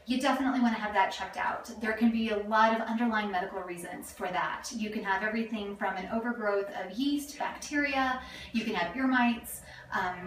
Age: 30-49